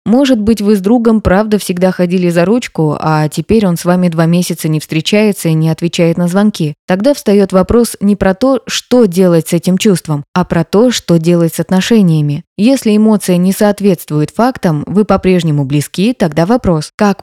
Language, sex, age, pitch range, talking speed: Russian, female, 20-39, 170-205 Hz, 185 wpm